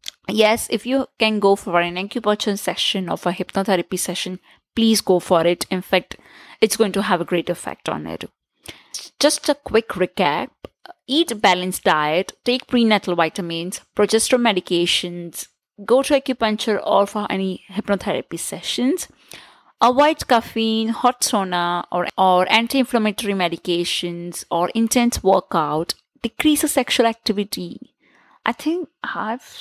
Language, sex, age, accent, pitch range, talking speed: English, female, 20-39, Indian, 185-255 Hz, 135 wpm